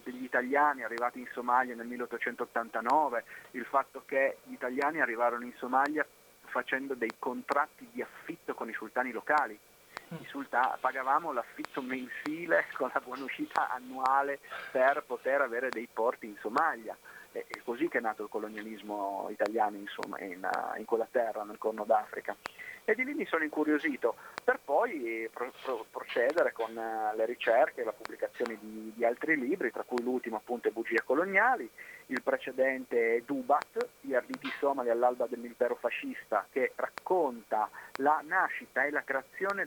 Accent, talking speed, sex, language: native, 150 wpm, male, Italian